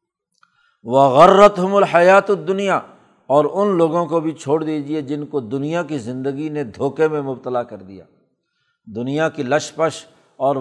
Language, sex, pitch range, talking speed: Urdu, male, 140-175 Hz, 145 wpm